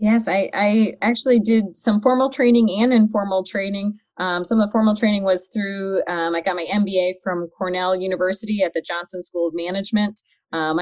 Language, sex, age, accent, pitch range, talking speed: English, female, 30-49, American, 170-210 Hz, 190 wpm